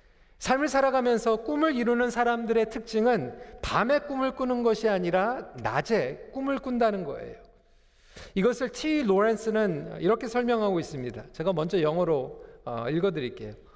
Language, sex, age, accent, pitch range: Korean, male, 40-59, native, 170-245 Hz